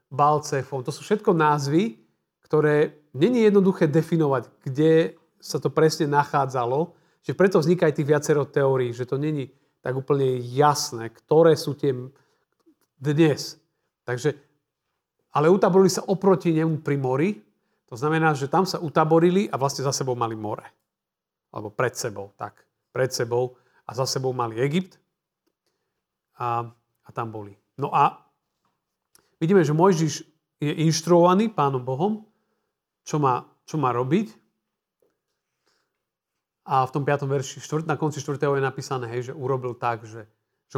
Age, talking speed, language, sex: 40-59, 135 wpm, Slovak, male